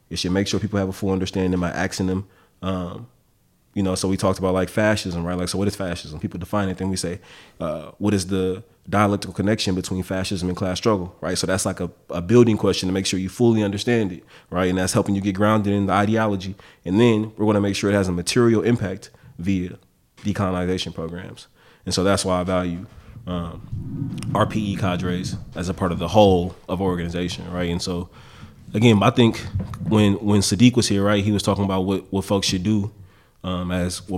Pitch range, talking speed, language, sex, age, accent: 95-105 Hz, 220 wpm, English, male, 20-39, American